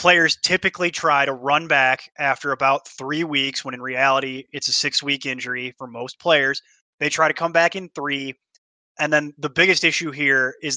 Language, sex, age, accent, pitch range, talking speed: English, male, 20-39, American, 135-175 Hz, 195 wpm